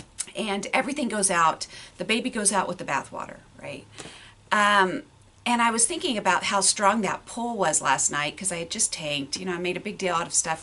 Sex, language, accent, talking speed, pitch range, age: female, English, American, 230 wpm, 155-210 Hz, 40-59